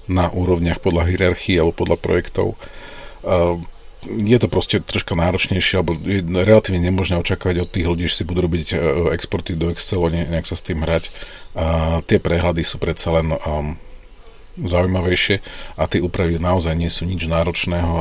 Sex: male